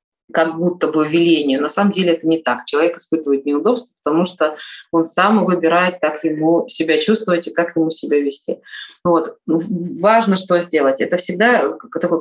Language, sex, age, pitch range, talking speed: Russian, female, 20-39, 165-220 Hz, 165 wpm